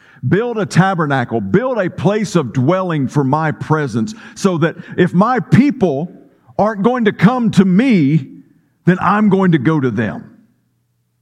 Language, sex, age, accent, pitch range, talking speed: English, male, 50-69, American, 125-185 Hz, 155 wpm